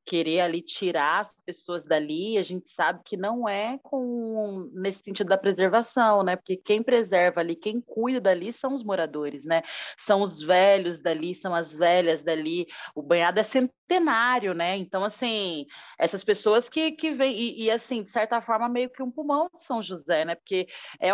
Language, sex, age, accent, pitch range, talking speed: Portuguese, female, 30-49, Brazilian, 170-225 Hz, 180 wpm